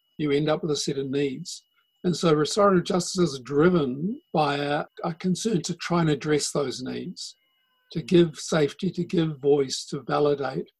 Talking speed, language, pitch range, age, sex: 180 wpm, English, 145-185 Hz, 50-69, male